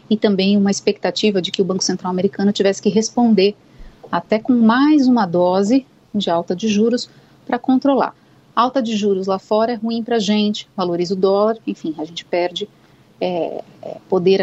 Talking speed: 180 wpm